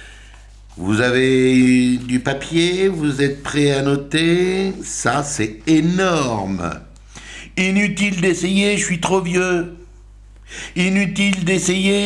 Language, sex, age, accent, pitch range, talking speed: French, male, 60-79, French, 100-165 Hz, 100 wpm